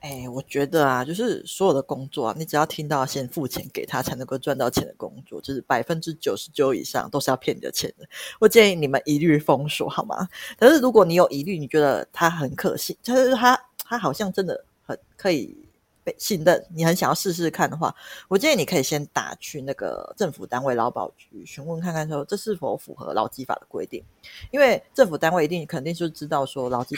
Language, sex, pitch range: Chinese, female, 145-190 Hz